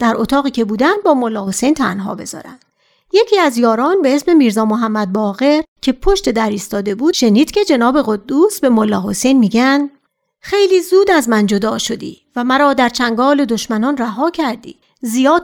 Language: Persian